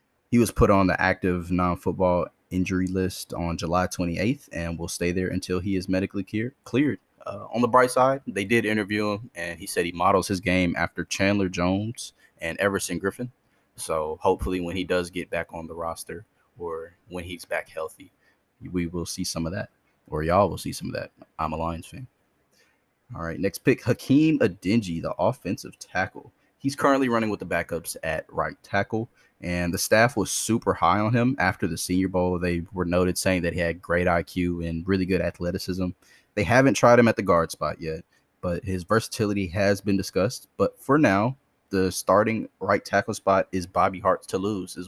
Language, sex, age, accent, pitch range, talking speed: English, male, 20-39, American, 90-110 Hz, 200 wpm